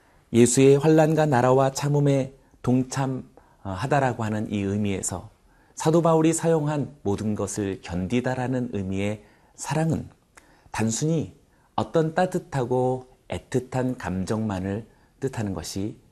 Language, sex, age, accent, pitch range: Korean, male, 40-59, native, 100-145 Hz